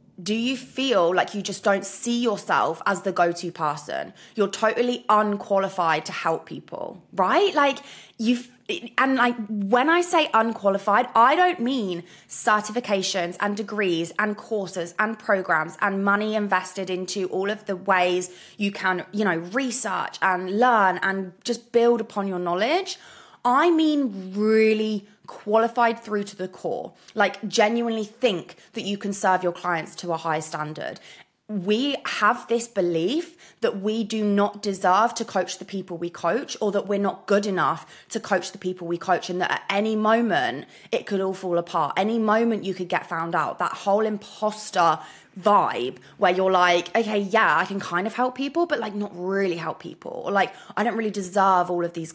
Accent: British